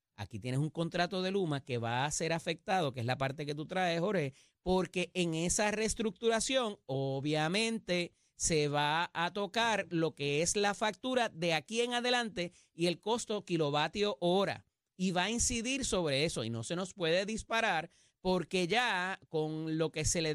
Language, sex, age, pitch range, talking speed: Spanish, male, 30-49, 150-210 Hz, 180 wpm